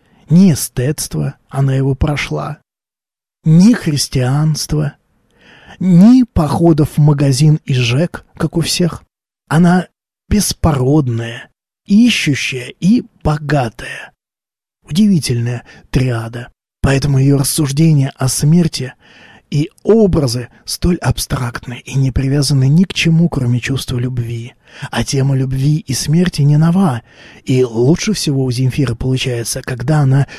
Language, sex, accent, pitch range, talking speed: Russian, male, native, 125-155 Hz, 115 wpm